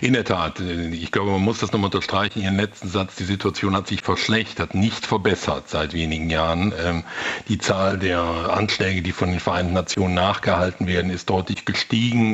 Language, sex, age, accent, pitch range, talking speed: German, male, 60-79, German, 90-110 Hz, 185 wpm